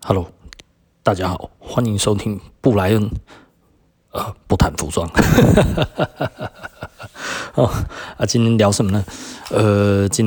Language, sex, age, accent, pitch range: Chinese, male, 20-39, native, 95-115 Hz